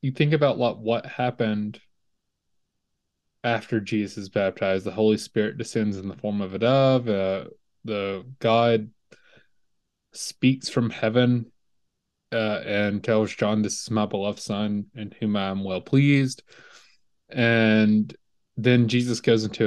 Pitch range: 100-130 Hz